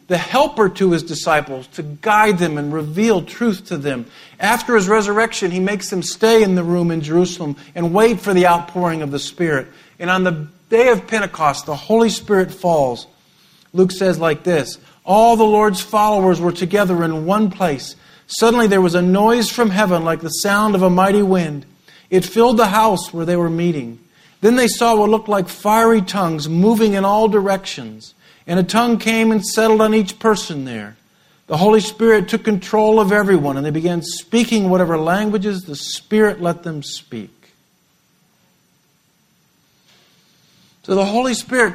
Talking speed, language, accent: 175 wpm, English, American